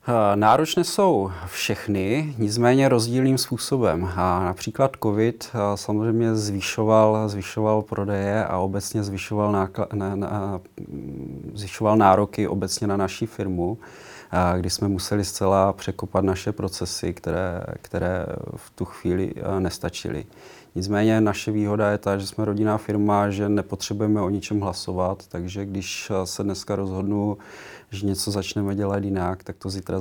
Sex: male